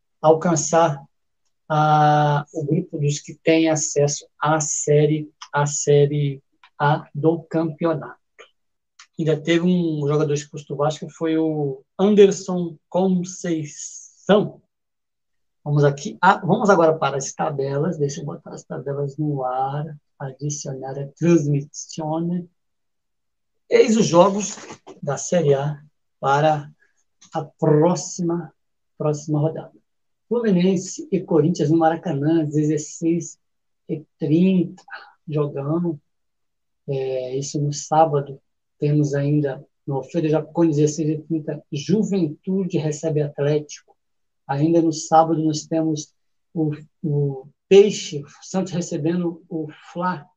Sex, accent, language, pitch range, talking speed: male, Brazilian, Portuguese, 150-170 Hz, 105 wpm